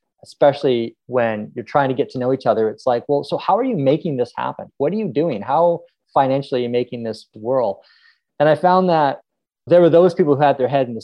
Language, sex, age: English, male, 20-39